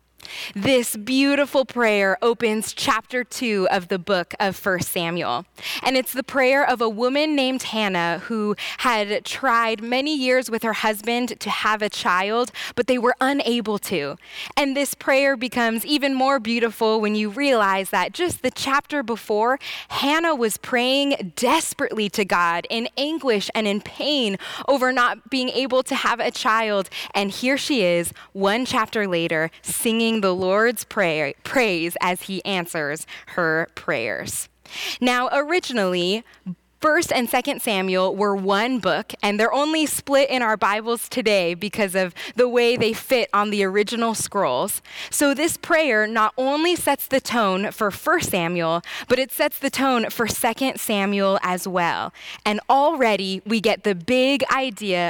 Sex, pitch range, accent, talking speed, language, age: female, 200-265 Hz, American, 155 wpm, English, 10-29